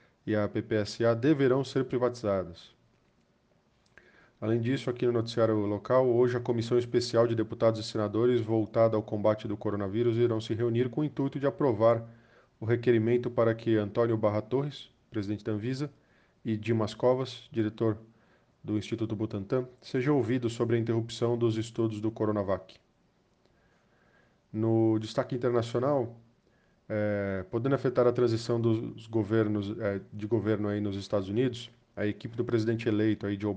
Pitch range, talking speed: 105-120 Hz, 150 wpm